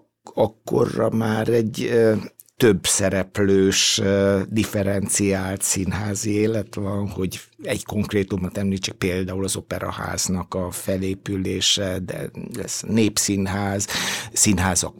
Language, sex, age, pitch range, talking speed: Hungarian, male, 60-79, 95-105 Hz, 90 wpm